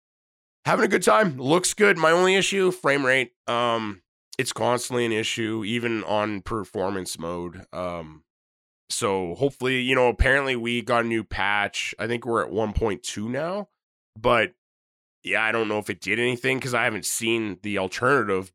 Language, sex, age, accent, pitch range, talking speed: English, male, 20-39, American, 100-125 Hz, 170 wpm